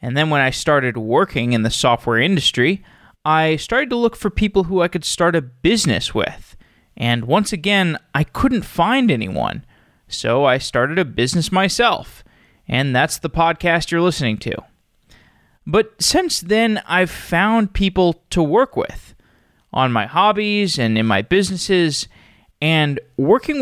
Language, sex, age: English, male, 20-39